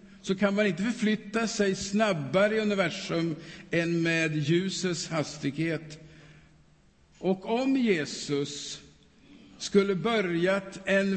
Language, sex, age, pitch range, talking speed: Swedish, male, 50-69, 160-210 Hz, 100 wpm